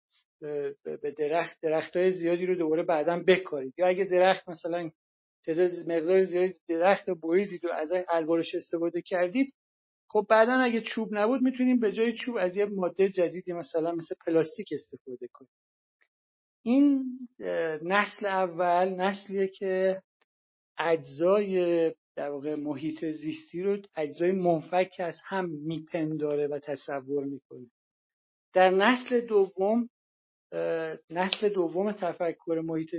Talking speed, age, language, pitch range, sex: 120 wpm, 50-69, Persian, 155-190 Hz, male